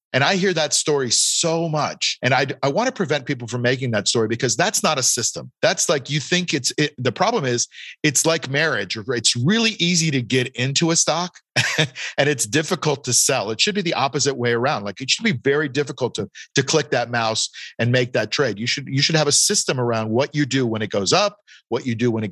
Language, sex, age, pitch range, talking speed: English, male, 50-69, 120-160 Hz, 240 wpm